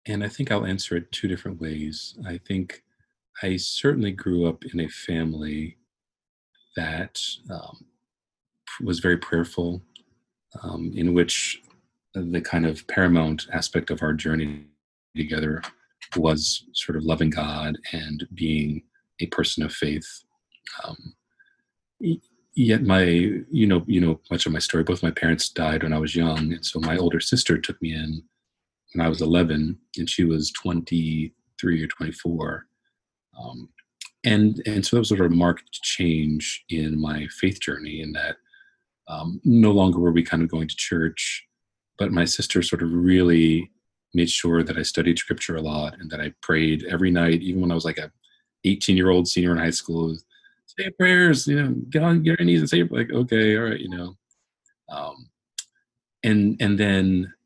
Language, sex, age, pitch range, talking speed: English, male, 40-59, 80-100 Hz, 170 wpm